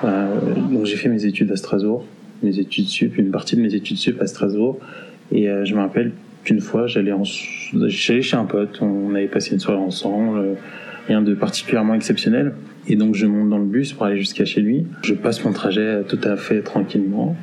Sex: male